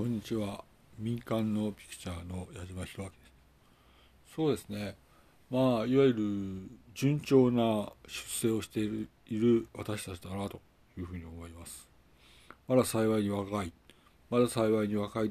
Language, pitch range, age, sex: Japanese, 85-120 Hz, 60-79, male